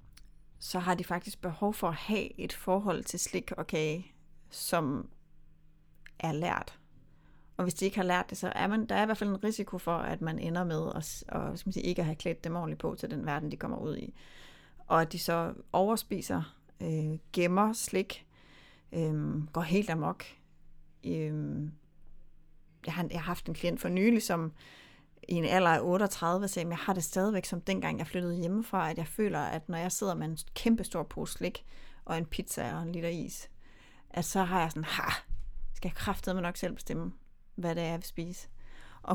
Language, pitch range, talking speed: Danish, 165-195 Hz, 210 wpm